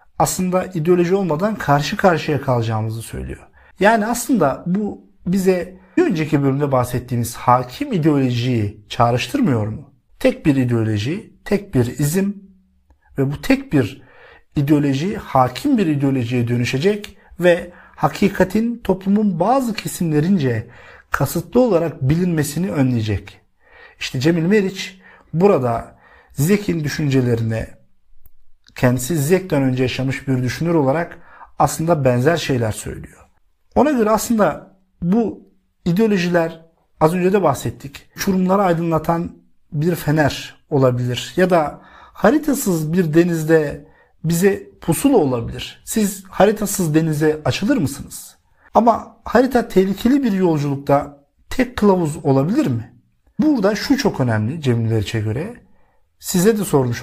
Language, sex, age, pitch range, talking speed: Turkish, male, 50-69, 125-190 Hz, 110 wpm